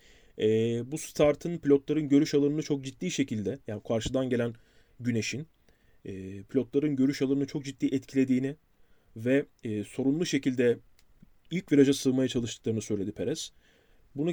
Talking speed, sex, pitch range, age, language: 115 wpm, male, 120-150 Hz, 30-49, Turkish